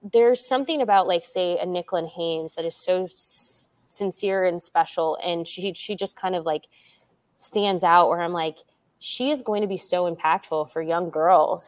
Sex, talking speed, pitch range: female, 190 wpm, 165-195 Hz